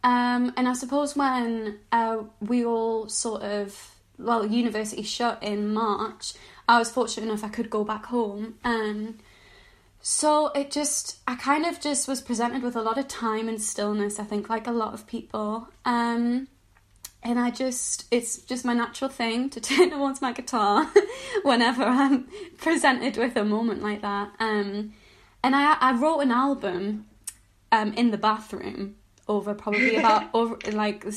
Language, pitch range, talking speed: English, 210-255 Hz, 170 wpm